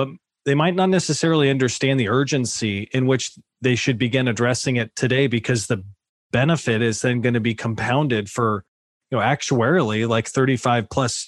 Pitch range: 115-135 Hz